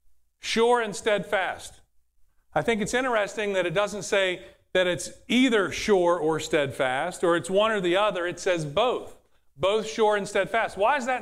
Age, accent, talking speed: 40-59, American, 175 wpm